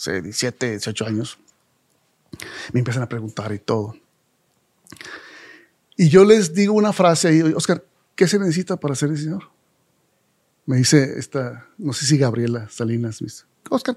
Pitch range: 135-190 Hz